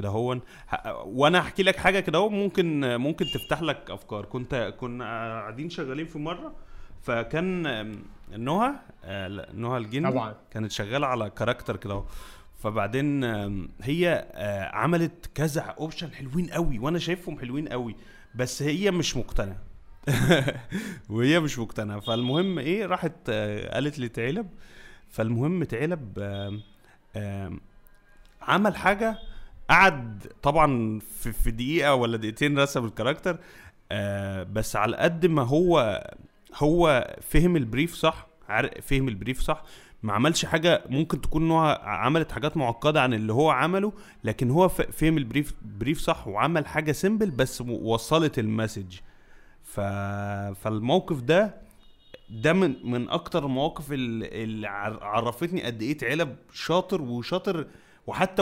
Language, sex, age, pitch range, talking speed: Arabic, male, 30-49, 110-165 Hz, 120 wpm